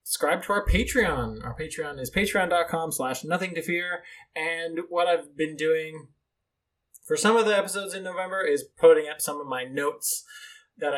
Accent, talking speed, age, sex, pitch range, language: American, 175 wpm, 20-39, male, 155-210 Hz, English